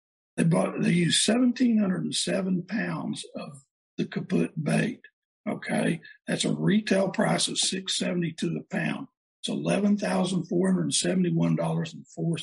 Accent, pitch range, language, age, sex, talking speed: American, 180-230 Hz, English, 60-79, male, 170 wpm